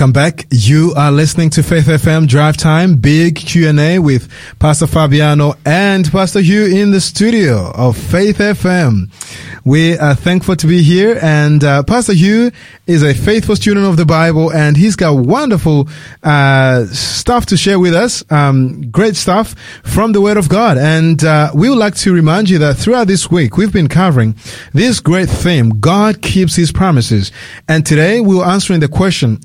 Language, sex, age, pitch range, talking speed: English, male, 30-49, 140-185 Hz, 180 wpm